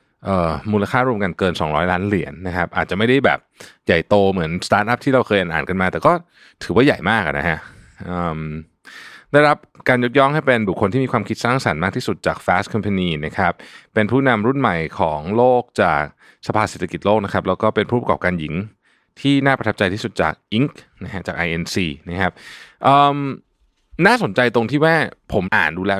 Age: 20-39